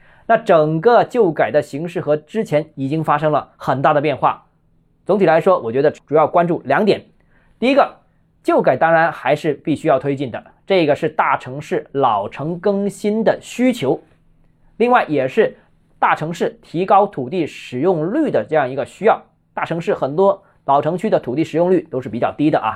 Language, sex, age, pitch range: Chinese, male, 20-39, 150-195 Hz